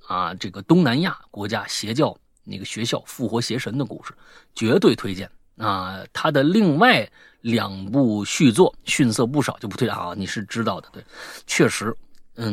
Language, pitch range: Chinese, 105-170 Hz